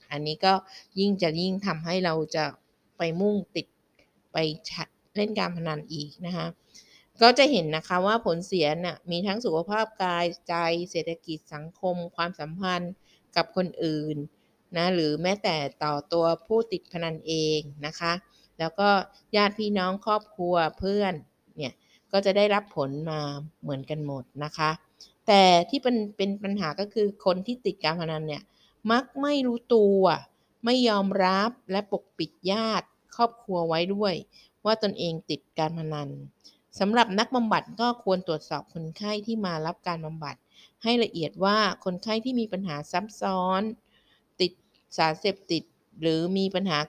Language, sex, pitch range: Thai, female, 160-205 Hz